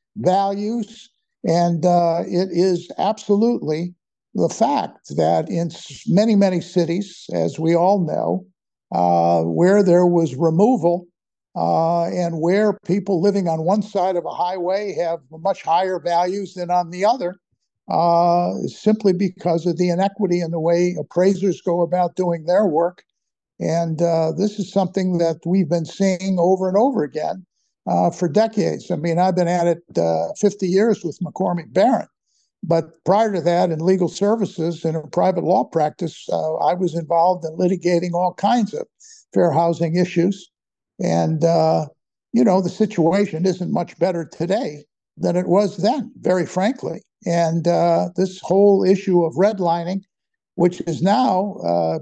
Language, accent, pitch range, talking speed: English, American, 170-195 Hz, 155 wpm